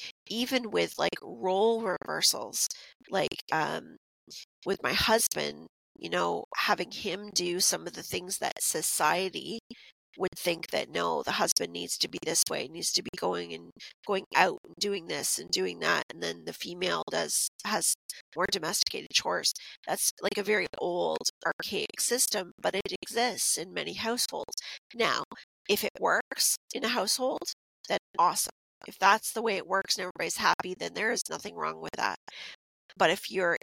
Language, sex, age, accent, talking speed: English, female, 30-49, American, 170 wpm